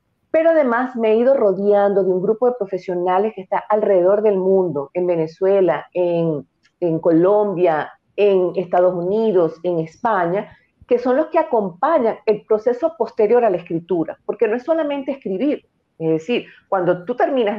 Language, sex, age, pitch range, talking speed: Spanish, female, 40-59, 180-220 Hz, 160 wpm